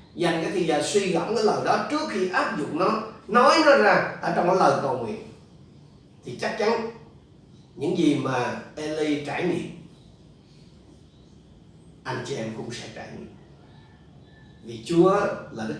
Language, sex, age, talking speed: Vietnamese, male, 30-49, 165 wpm